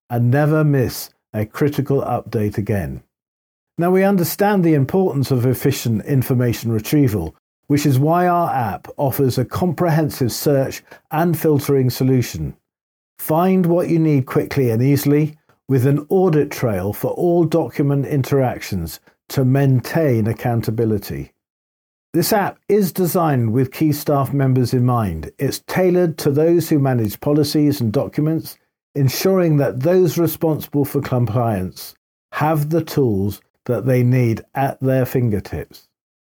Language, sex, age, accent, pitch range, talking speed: English, male, 50-69, British, 120-155 Hz, 135 wpm